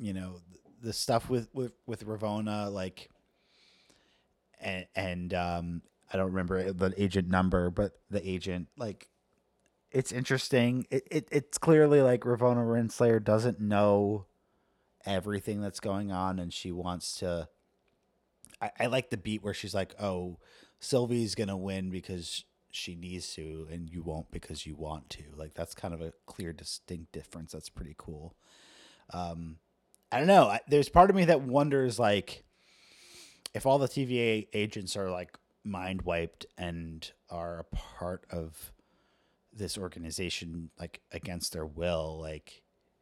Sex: male